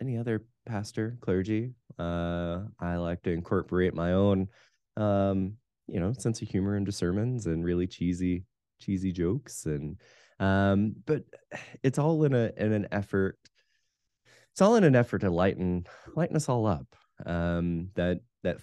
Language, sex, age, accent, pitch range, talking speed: English, male, 20-39, American, 85-110 Hz, 150 wpm